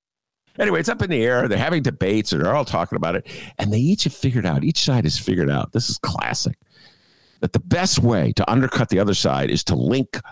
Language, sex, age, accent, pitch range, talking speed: English, male, 50-69, American, 125-210 Hz, 240 wpm